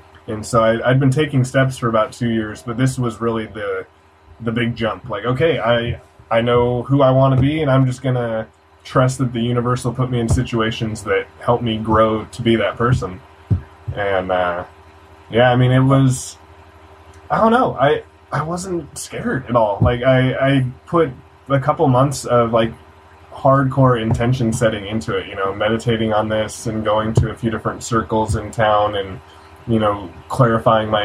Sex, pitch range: male, 95-120 Hz